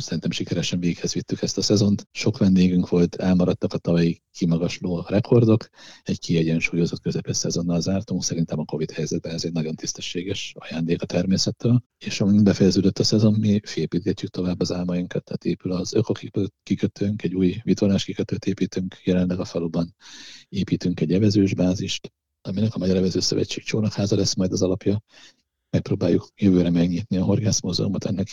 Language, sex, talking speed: Hungarian, male, 155 wpm